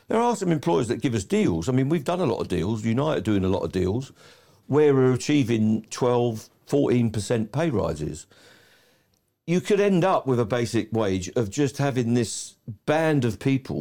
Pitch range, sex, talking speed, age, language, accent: 110-140 Hz, male, 195 wpm, 50-69, English, British